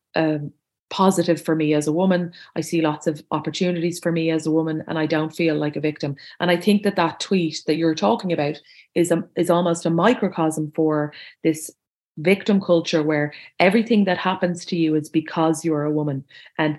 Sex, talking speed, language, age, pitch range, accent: female, 195 wpm, English, 30-49, 150-170 Hz, Irish